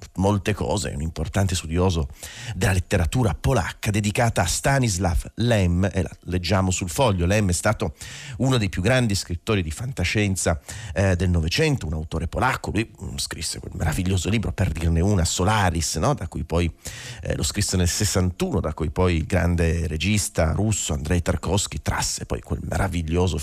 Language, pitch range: Italian, 85-105 Hz